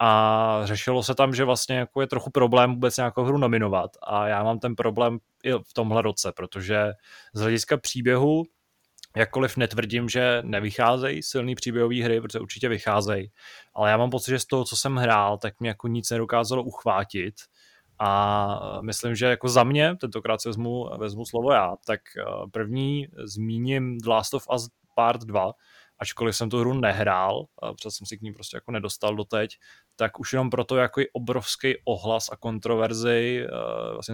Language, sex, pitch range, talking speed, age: Czech, male, 105-125 Hz, 170 wpm, 20-39